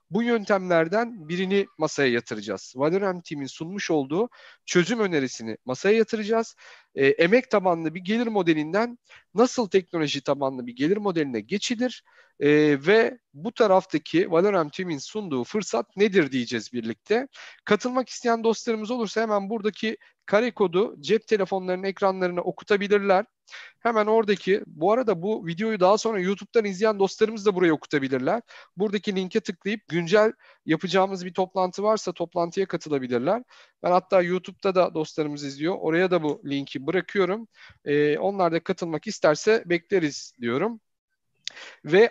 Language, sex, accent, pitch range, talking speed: Turkish, male, native, 170-220 Hz, 130 wpm